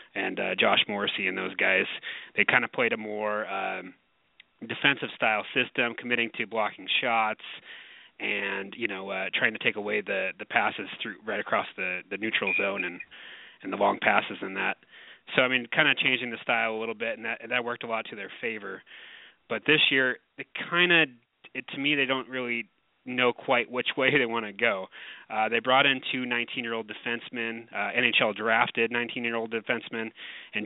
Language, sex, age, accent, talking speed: English, male, 30-49, American, 190 wpm